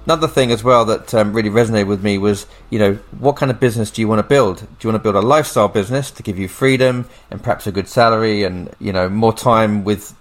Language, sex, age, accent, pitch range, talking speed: English, male, 30-49, British, 100-115 Hz, 265 wpm